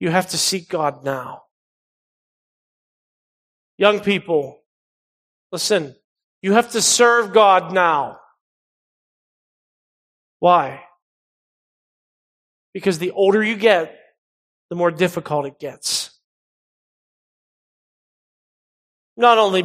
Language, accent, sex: English, American, male